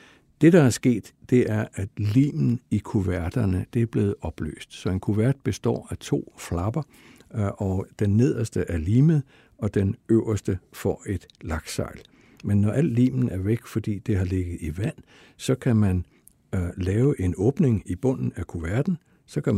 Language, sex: Danish, male